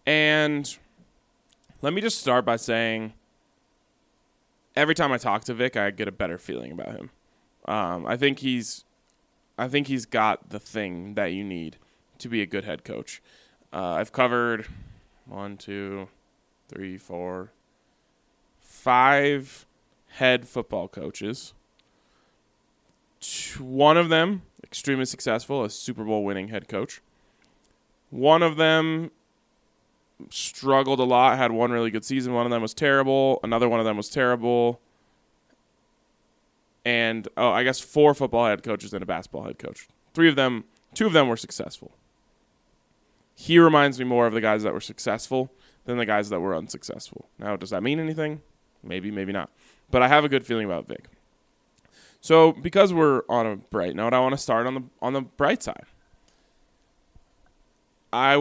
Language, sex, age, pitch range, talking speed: English, male, 20-39, 105-140 Hz, 160 wpm